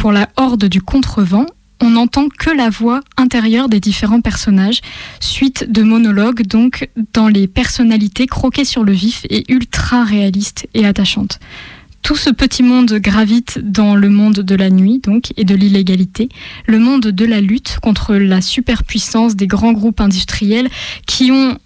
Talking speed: 165 wpm